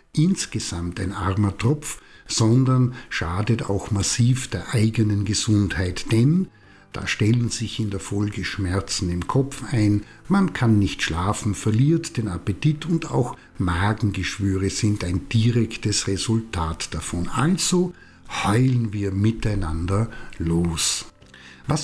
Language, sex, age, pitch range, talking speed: German, male, 60-79, 95-125 Hz, 120 wpm